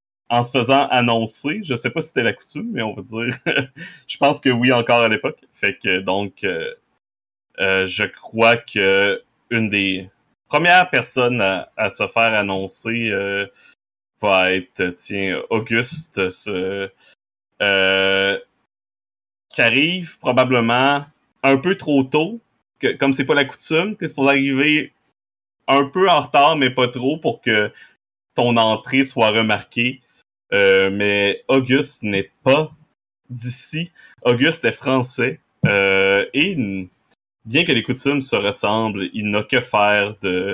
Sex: male